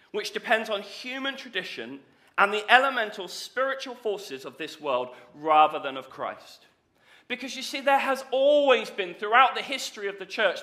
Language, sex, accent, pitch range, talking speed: English, male, British, 205-265 Hz, 170 wpm